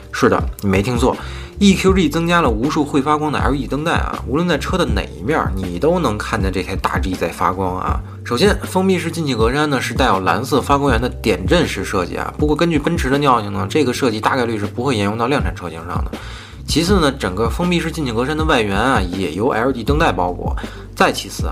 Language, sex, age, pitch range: Chinese, male, 20-39, 100-160 Hz